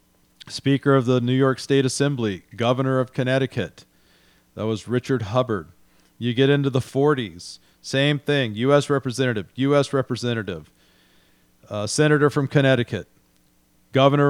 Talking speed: 125 wpm